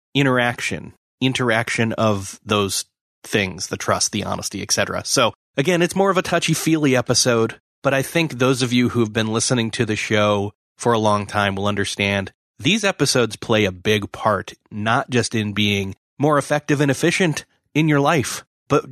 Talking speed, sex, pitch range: 175 wpm, male, 110-140 Hz